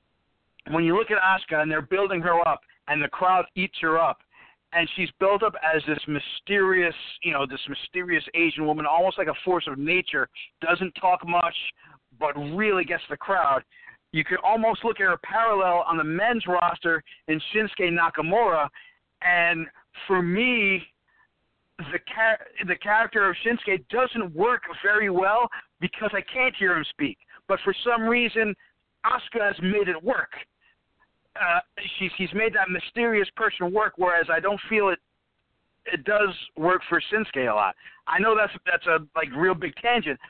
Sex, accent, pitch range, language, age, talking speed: male, American, 165-215 Hz, English, 50-69, 170 wpm